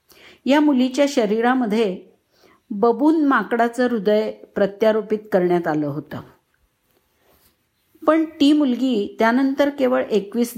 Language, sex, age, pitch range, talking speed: Marathi, female, 50-69, 195-255 Hz, 90 wpm